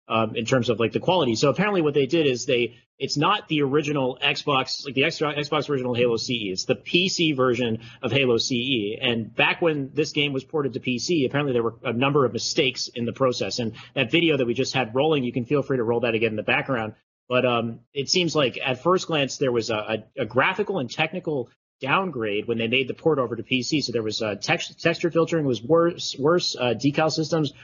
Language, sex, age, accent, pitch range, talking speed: English, male, 30-49, American, 120-150 Hz, 230 wpm